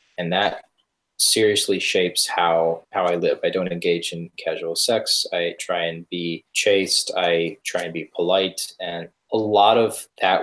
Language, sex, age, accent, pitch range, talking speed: English, male, 20-39, American, 85-100 Hz, 165 wpm